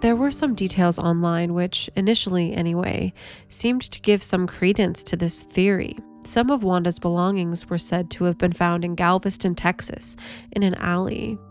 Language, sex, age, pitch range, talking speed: English, female, 20-39, 170-200 Hz, 165 wpm